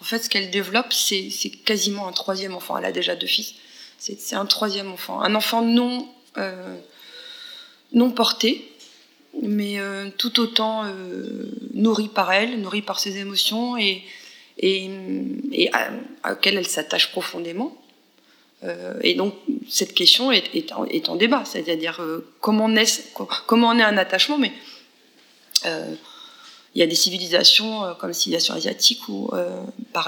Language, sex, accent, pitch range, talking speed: French, female, French, 185-245 Hz, 165 wpm